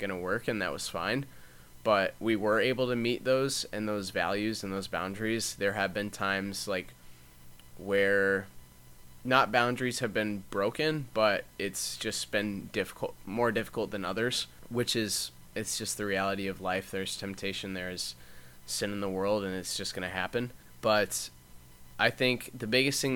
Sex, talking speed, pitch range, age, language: male, 175 wpm, 95-110 Hz, 20-39, English